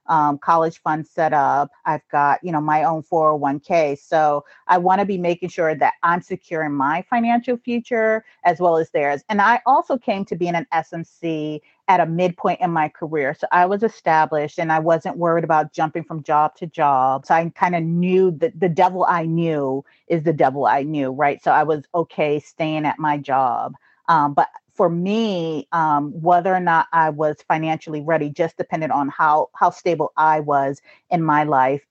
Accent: American